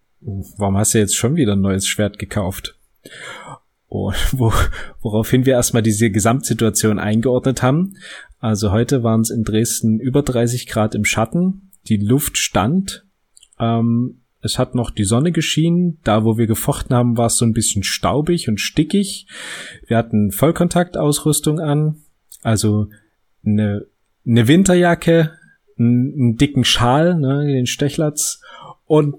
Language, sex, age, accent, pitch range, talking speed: German, male, 30-49, German, 110-145 Hz, 145 wpm